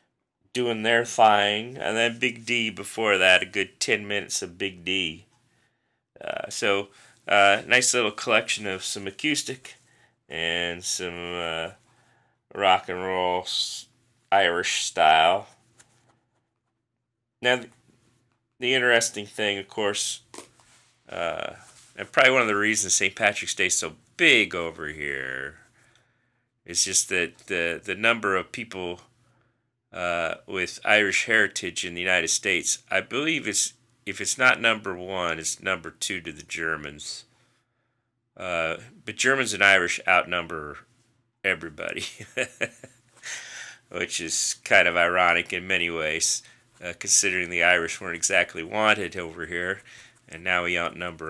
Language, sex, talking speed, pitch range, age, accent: English, male, 130 wpm, 90-120 Hz, 30-49, American